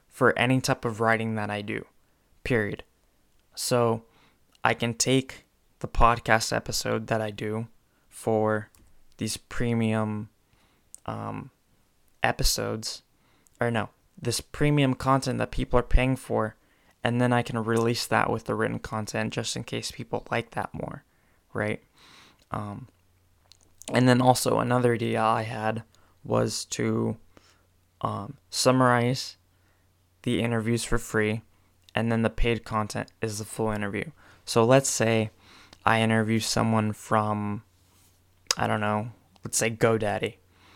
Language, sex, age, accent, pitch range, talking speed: English, male, 20-39, American, 95-115 Hz, 130 wpm